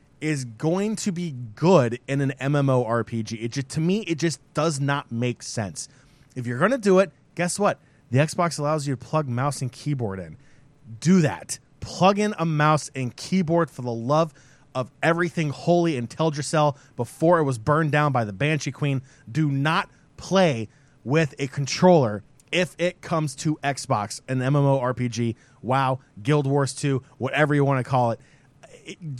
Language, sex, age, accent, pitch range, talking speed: English, male, 20-39, American, 130-160 Hz, 170 wpm